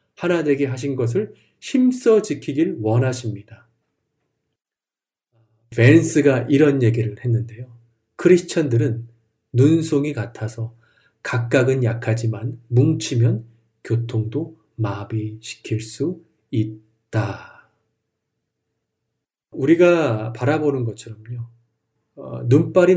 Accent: native